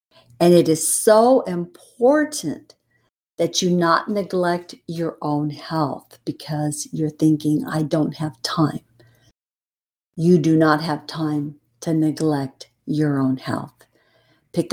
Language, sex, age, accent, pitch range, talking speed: English, female, 50-69, American, 150-185 Hz, 120 wpm